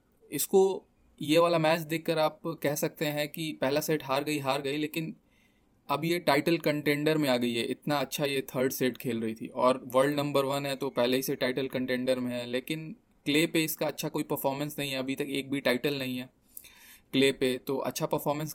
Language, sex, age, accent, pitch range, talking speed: Hindi, male, 20-39, native, 130-150 Hz, 215 wpm